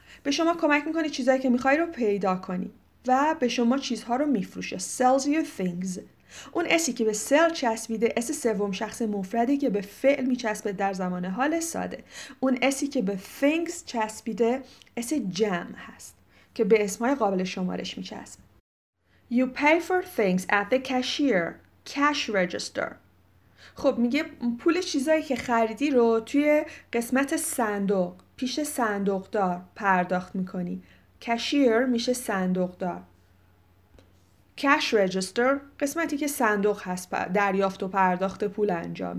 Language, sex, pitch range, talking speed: Persian, female, 195-280 Hz, 140 wpm